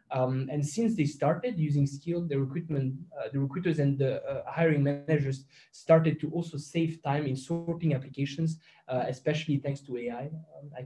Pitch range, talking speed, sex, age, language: 135-160 Hz, 175 wpm, male, 20-39, English